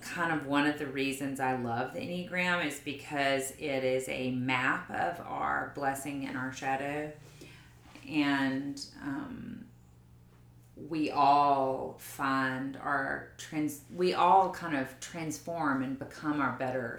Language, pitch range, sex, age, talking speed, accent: English, 130-150 Hz, female, 30-49, 135 wpm, American